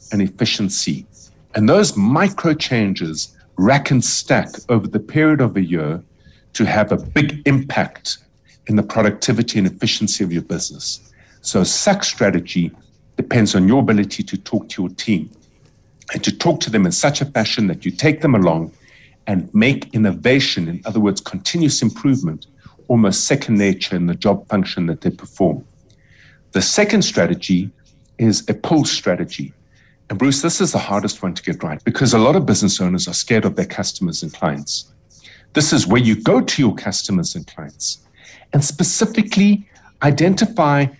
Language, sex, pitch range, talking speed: English, male, 105-145 Hz, 170 wpm